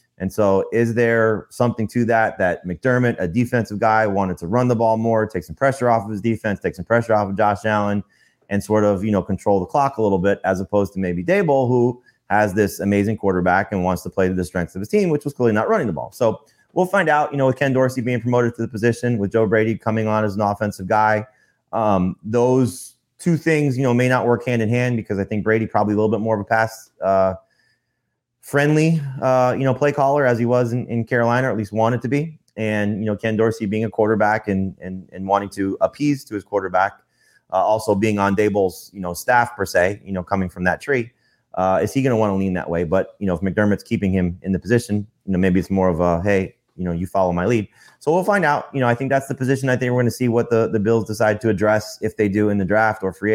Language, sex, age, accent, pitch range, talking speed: English, male, 30-49, American, 100-120 Hz, 265 wpm